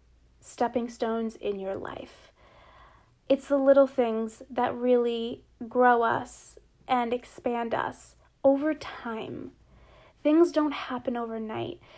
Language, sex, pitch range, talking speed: English, female, 235-290 Hz, 110 wpm